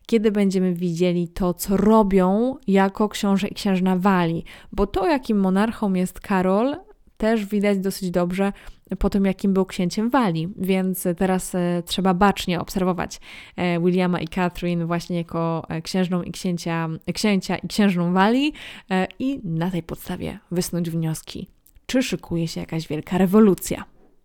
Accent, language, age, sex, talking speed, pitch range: native, Polish, 20-39, female, 145 wpm, 175-205 Hz